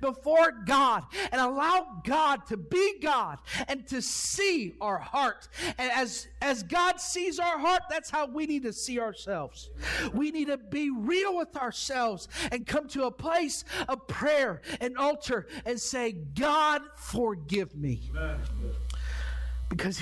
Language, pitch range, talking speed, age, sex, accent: English, 225-315 Hz, 145 wpm, 50-69, male, American